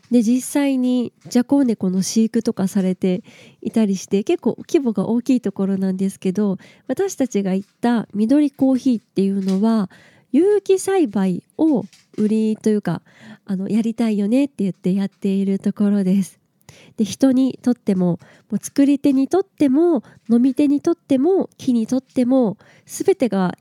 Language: Japanese